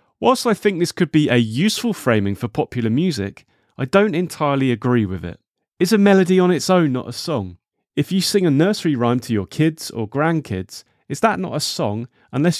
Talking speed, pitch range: 210 wpm, 120-180 Hz